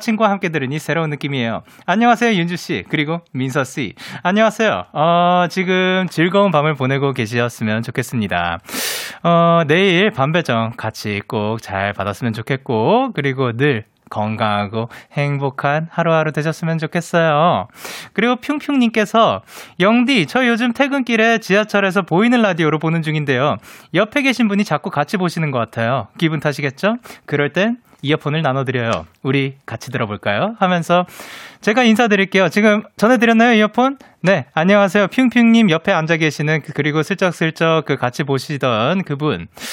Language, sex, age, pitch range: Korean, male, 20-39, 135-210 Hz